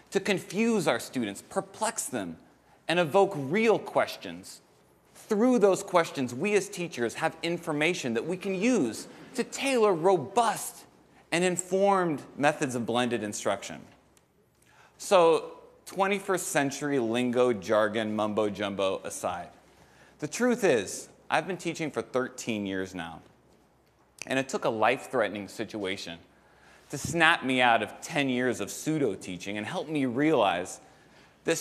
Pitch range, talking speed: 110-175 Hz, 130 wpm